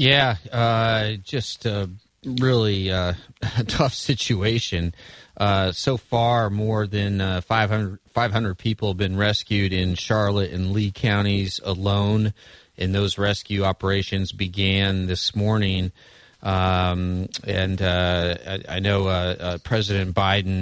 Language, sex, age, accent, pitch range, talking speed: English, male, 30-49, American, 90-105 Hz, 130 wpm